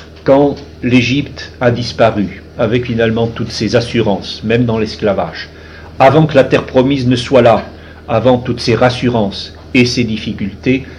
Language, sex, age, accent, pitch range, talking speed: French, male, 50-69, French, 105-125 Hz, 145 wpm